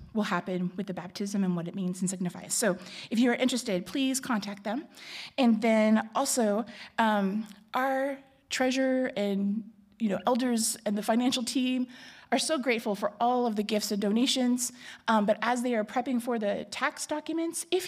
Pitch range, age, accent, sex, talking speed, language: 200-245 Hz, 30-49, American, female, 180 wpm, English